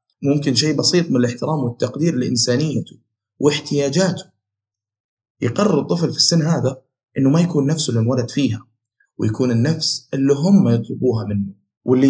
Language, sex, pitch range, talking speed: Arabic, male, 125-170 Hz, 130 wpm